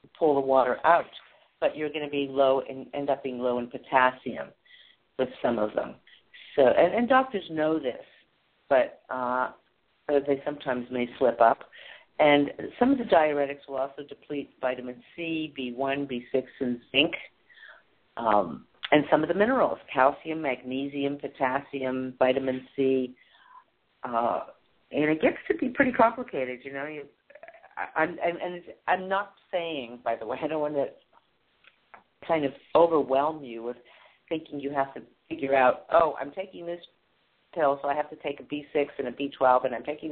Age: 50-69